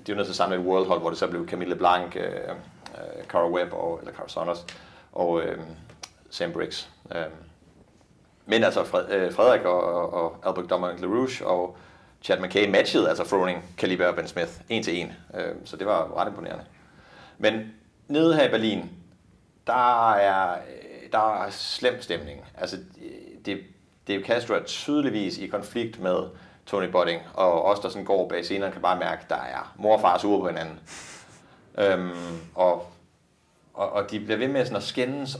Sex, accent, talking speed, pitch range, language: male, native, 180 wpm, 90-115 Hz, Danish